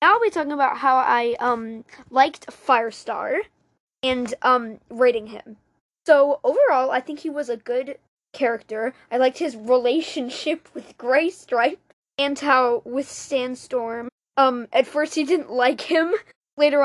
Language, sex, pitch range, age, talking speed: English, female, 245-305 Hz, 10-29, 145 wpm